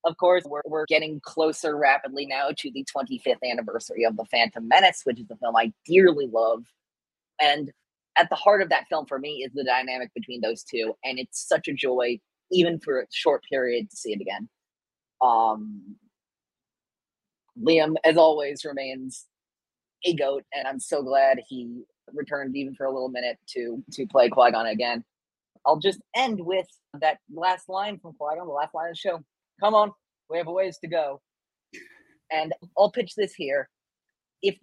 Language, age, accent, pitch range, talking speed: English, 30-49, American, 140-190 Hz, 180 wpm